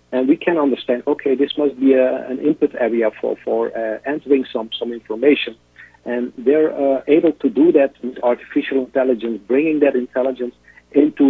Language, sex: English, male